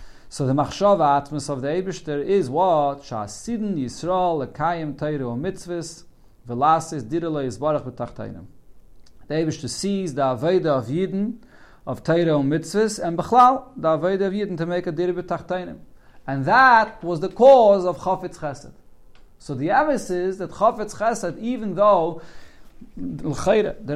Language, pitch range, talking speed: English, 145-190 Hz, 145 wpm